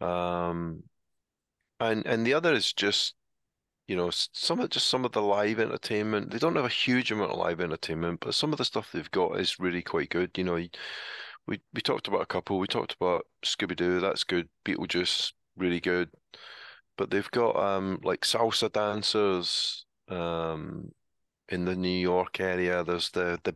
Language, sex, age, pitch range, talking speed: English, male, 30-49, 85-95 Hz, 180 wpm